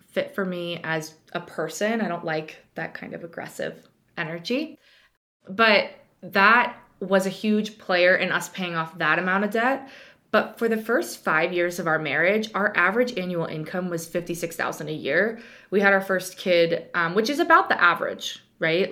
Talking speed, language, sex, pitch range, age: 180 wpm, English, female, 170-200 Hz, 20-39